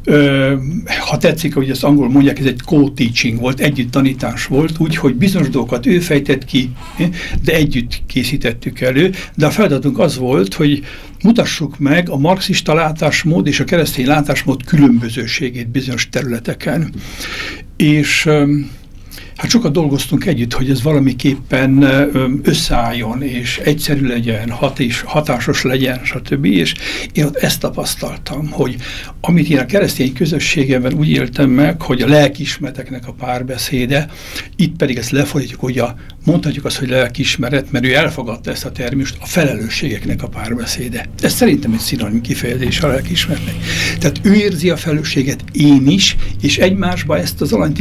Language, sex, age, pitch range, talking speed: Hungarian, male, 60-79, 125-150 Hz, 145 wpm